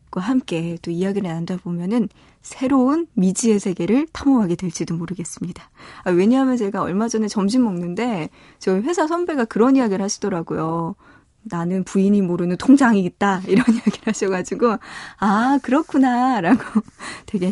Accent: native